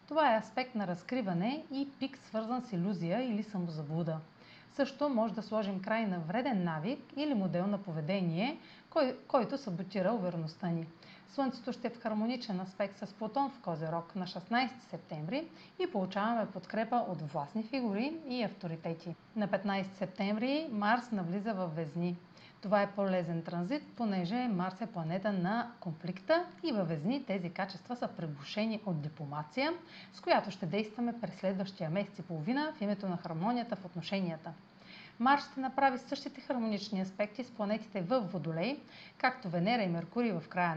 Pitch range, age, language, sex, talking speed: 180-240 Hz, 40-59, Bulgarian, female, 155 wpm